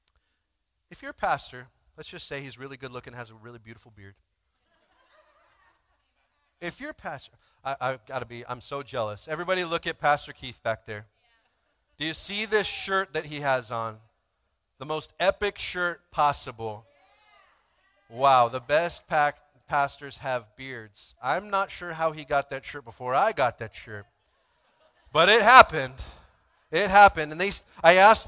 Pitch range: 115-175 Hz